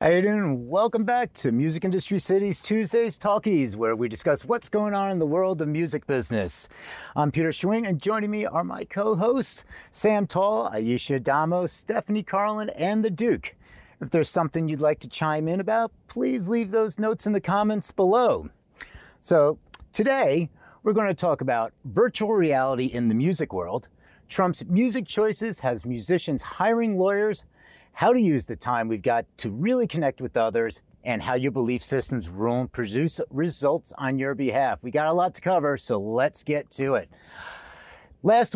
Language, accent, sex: English, American, male